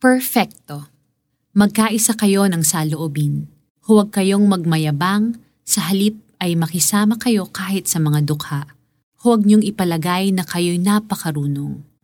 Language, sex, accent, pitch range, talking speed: Filipino, female, native, 155-220 Hz, 110 wpm